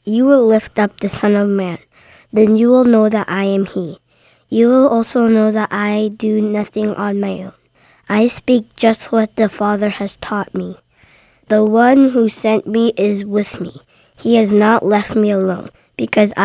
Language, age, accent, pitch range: Korean, 20-39, American, 205-230 Hz